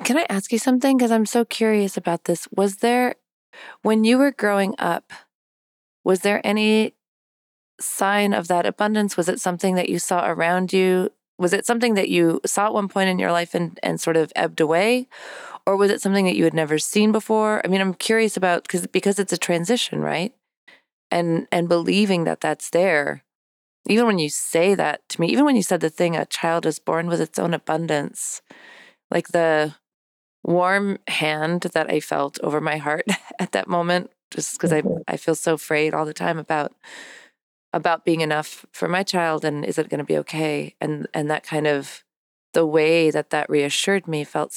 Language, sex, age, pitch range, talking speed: English, female, 30-49, 160-200 Hz, 200 wpm